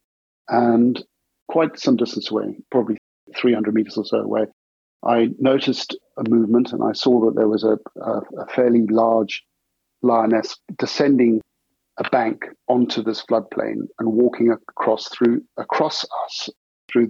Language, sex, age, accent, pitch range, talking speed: English, male, 50-69, British, 110-120 Hz, 135 wpm